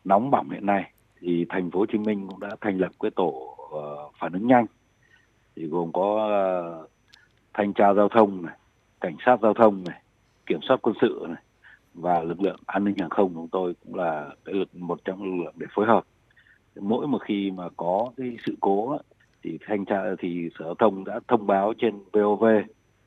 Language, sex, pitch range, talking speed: Vietnamese, male, 90-110 Hz, 190 wpm